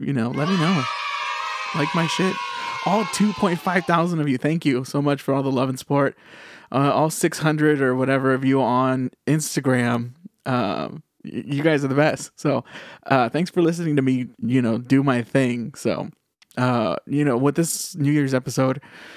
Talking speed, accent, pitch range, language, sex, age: 185 wpm, American, 130-155 Hz, English, male, 20-39